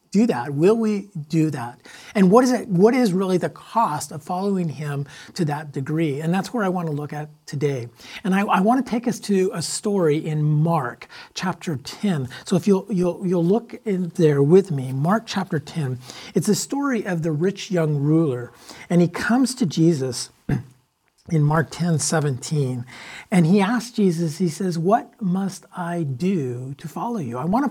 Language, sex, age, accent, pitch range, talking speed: English, male, 50-69, American, 155-210 Hz, 195 wpm